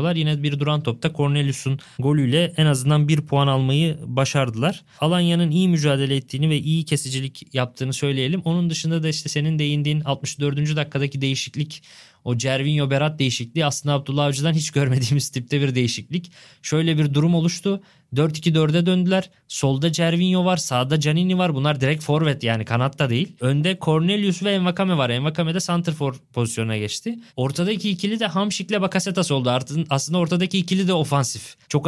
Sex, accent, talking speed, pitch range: male, native, 155 wpm, 130-165 Hz